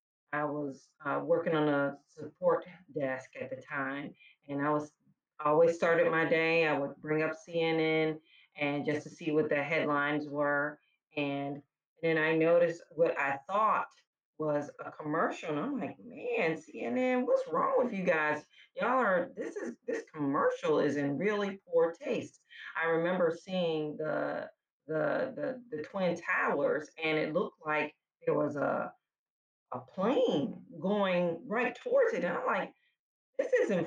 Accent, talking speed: American, 160 wpm